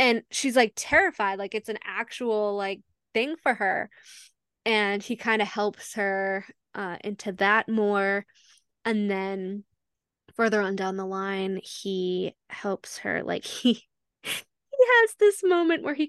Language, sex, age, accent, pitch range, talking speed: English, female, 10-29, American, 205-300 Hz, 150 wpm